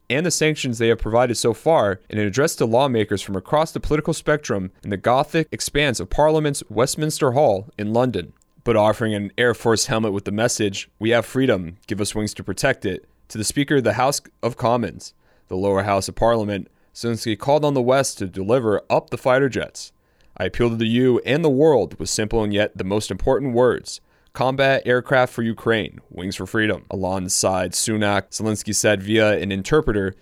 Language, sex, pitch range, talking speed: English, male, 100-130 Hz, 200 wpm